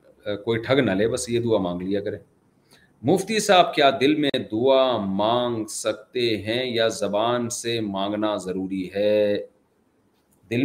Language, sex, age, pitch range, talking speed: Urdu, male, 40-59, 110-140 Hz, 145 wpm